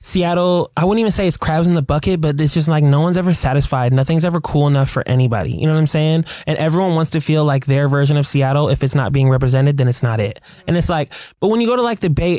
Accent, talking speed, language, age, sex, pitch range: American, 285 wpm, English, 20-39, male, 145-190 Hz